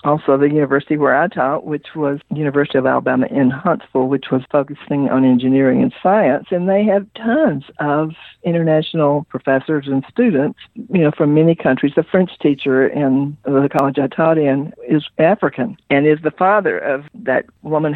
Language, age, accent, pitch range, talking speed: English, 60-79, American, 140-175 Hz, 175 wpm